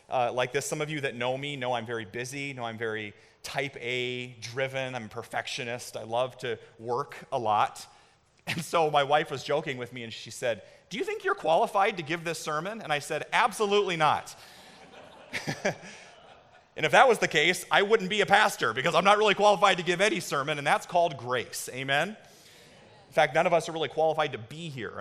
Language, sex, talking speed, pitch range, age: English, male, 215 wpm, 115-160 Hz, 30-49